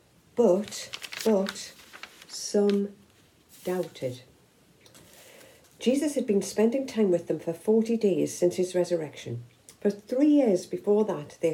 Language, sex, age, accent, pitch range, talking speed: English, female, 60-79, British, 160-225 Hz, 120 wpm